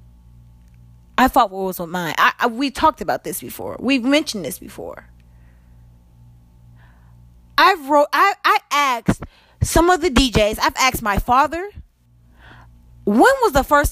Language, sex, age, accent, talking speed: English, female, 20-39, American, 145 wpm